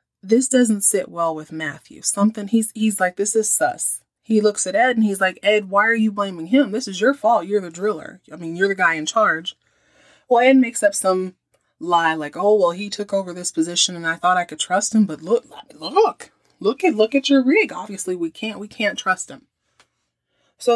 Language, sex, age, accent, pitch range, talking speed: English, female, 30-49, American, 165-230 Hz, 230 wpm